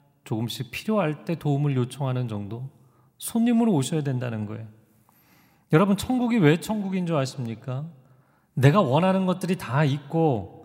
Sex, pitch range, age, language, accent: male, 140-200 Hz, 40-59, Korean, native